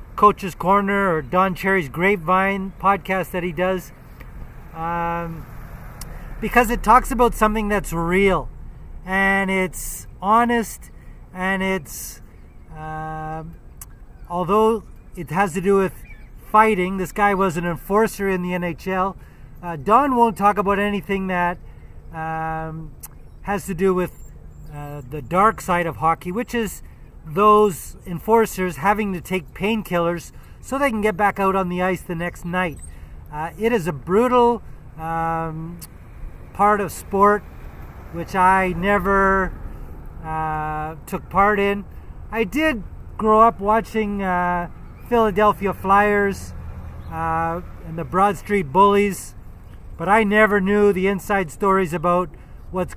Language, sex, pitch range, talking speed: English, male, 165-205 Hz, 130 wpm